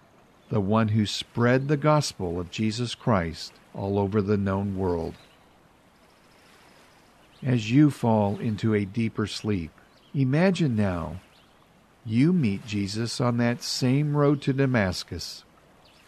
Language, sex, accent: English, male, American